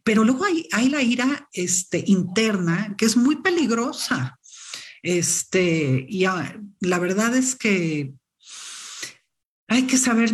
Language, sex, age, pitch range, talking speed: Spanish, female, 50-69, 170-245 Hz, 120 wpm